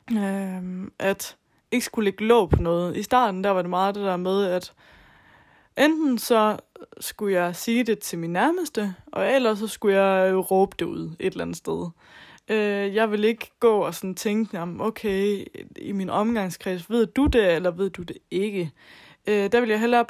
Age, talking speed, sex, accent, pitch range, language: 20-39, 180 wpm, female, native, 185-225 Hz, Danish